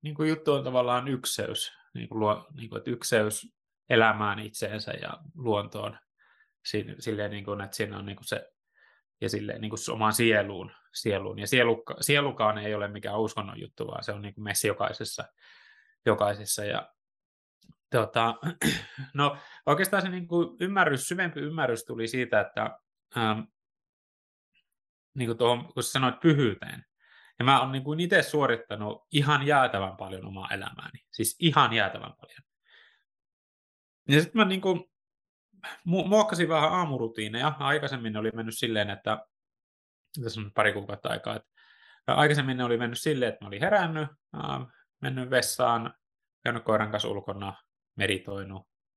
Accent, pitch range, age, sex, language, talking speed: native, 105-145 Hz, 20-39, male, Finnish, 130 wpm